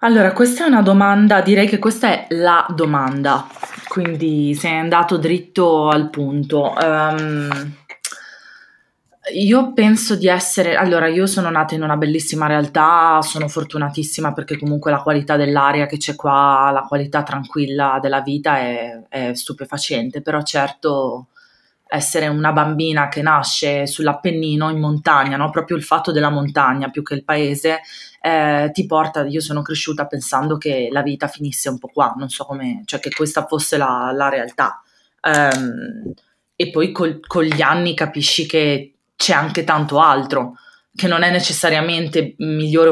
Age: 20-39